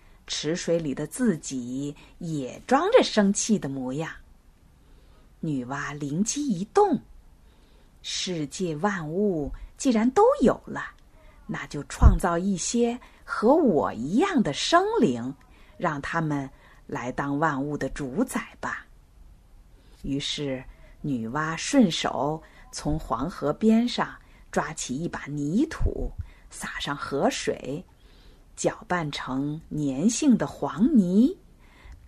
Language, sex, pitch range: Chinese, female, 145-230 Hz